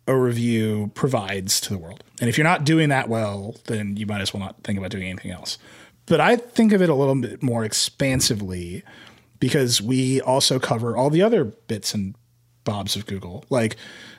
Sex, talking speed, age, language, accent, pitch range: male, 200 wpm, 30-49, English, American, 110-140 Hz